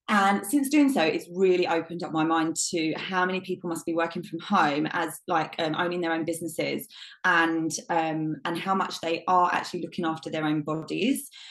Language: English